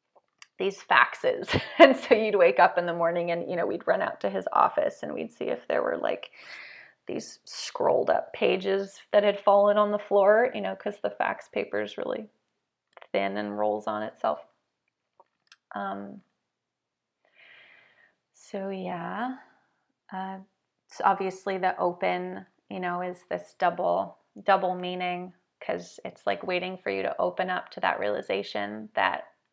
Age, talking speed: 20-39, 155 wpm